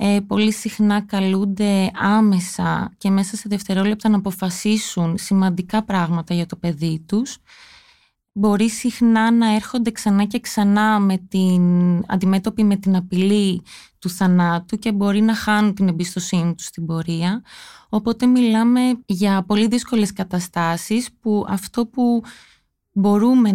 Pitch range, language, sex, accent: 185-220 Hz, Greek, female, native